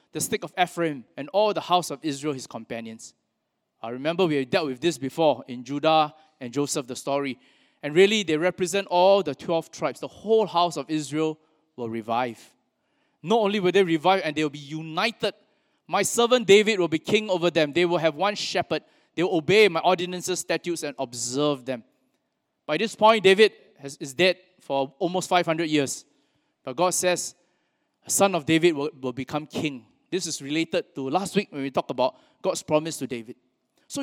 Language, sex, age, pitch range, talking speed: English, male, 20-39, 150-200 Hz, 195 wpm